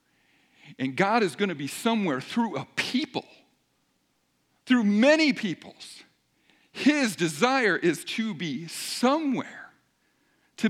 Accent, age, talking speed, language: American, 50-69, 110 wpm, English